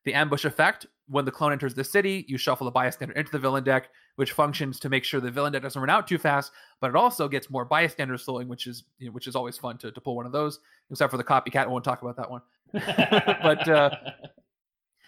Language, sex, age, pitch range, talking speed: English, male, 30-49, 130-155 Hz, 250 wpm